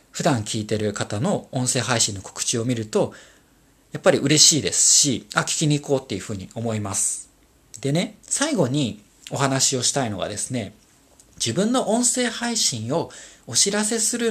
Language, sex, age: Japanese, male, 40-59